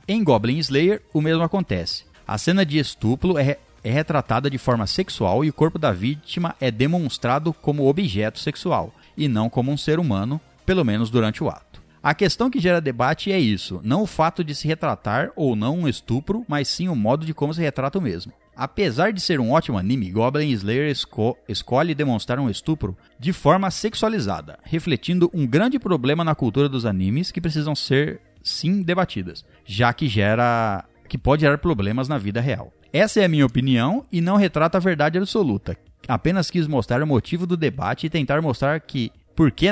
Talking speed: 190 wpm